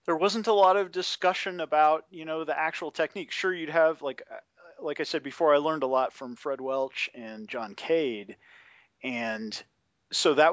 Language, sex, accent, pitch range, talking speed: English, male, American, 120-160 Hz, 190 wpm